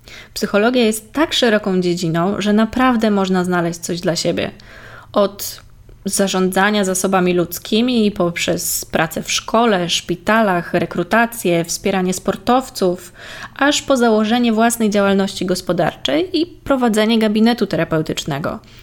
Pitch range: 175-220 Hz